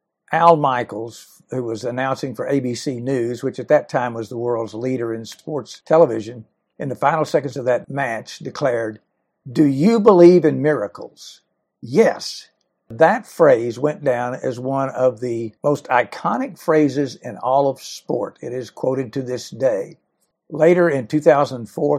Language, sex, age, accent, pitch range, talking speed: English, male, 60-79, American, 120-160 Hz, 155 wpm